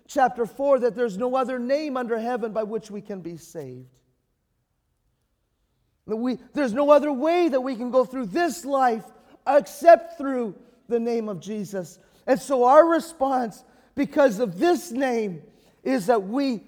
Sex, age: male, 40-59